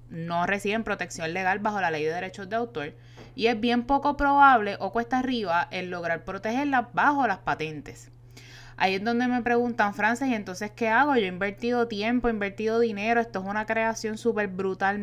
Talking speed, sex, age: 190 wpm, female, 20-39